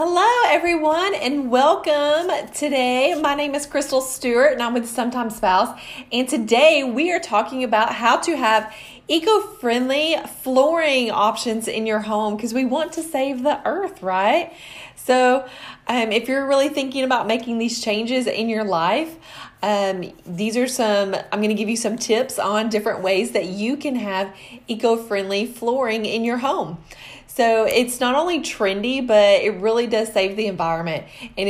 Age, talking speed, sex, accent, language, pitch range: 30-49, 165 wpm, female, American, English, 210-275 Hz